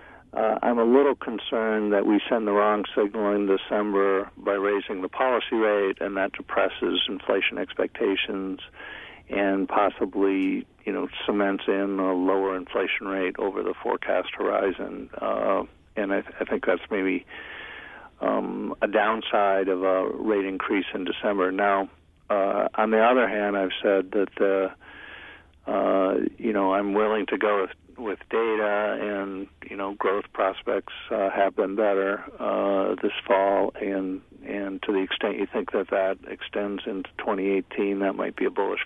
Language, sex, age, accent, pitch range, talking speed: English, male, 50-69, American, 95-105 Hz, 160 wpm